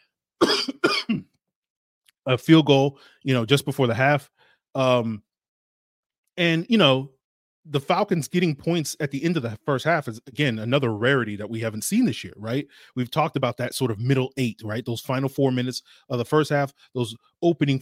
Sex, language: male, English